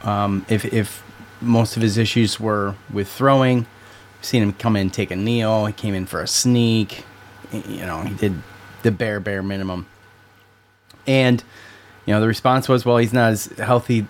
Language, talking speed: English, 185 wpm